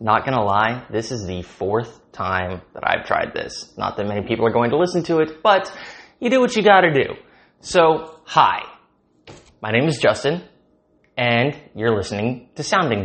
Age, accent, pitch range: 20-39, American, 105-145 Hz